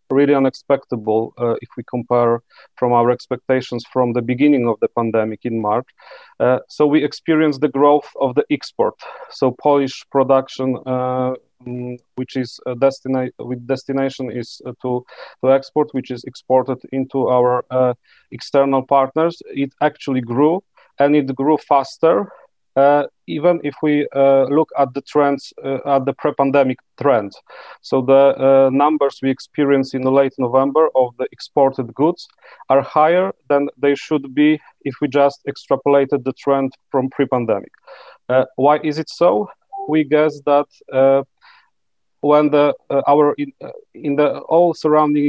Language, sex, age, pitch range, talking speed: Slovak, male, 40-59, 130-145 Hz, 155 wpm